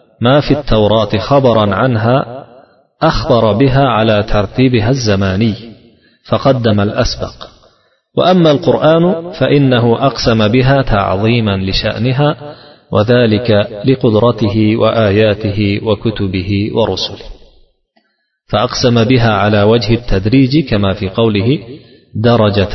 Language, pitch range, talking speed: Russian, 100-130 Hz, 85 wpm